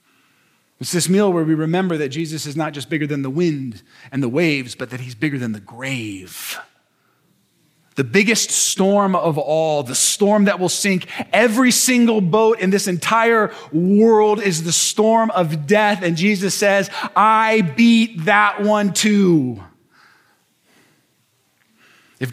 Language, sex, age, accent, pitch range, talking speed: English, male, 30-49, American, 165-225 Hz, 150 wpm